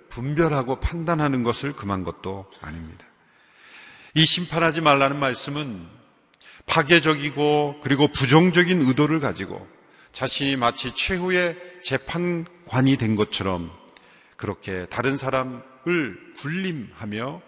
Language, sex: Korean, male